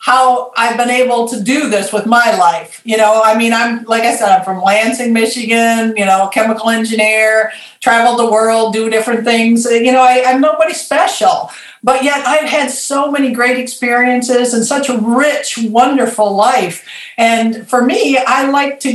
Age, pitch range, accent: 50-69, 225-260 Hz, American